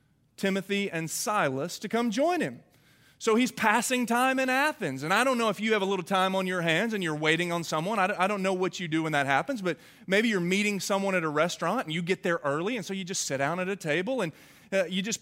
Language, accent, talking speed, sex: English, American, 260 wpm, male